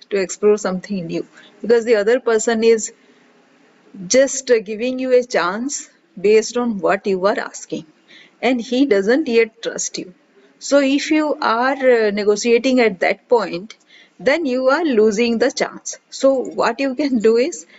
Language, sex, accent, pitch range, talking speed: English, female, Indian, 220-275 Hz, 150 wpm